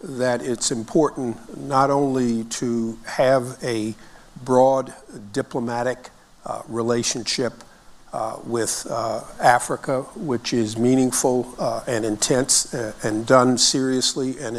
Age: 50-69